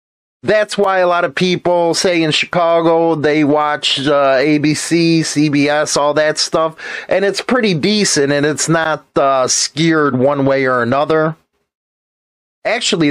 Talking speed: 140 wpm